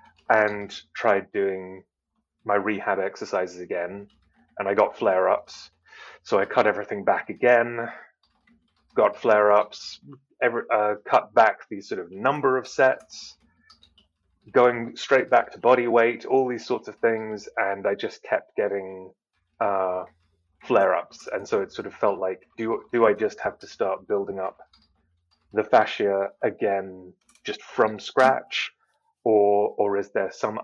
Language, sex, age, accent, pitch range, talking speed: English, male, 30-49, British, 95-105 Hz, 140 wpm